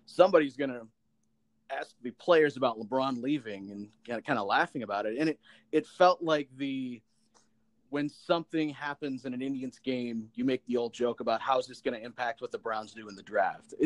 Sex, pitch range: male, 125-180 Hz